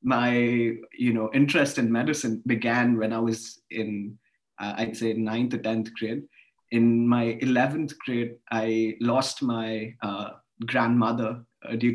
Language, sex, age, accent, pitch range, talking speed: English, male, 20-39, Indian, 115-125 Hz, 145 wpm